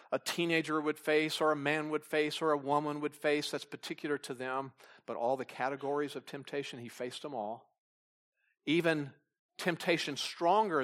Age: 50-69